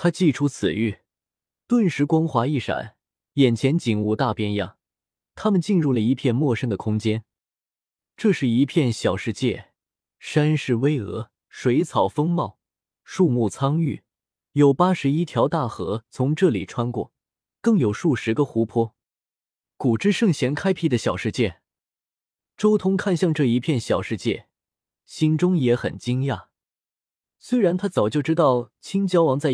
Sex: male